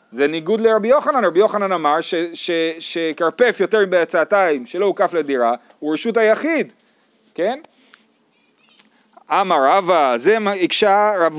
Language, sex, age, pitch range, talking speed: Hebrew, male, 30-49, 180-230 Hz, 130 wpm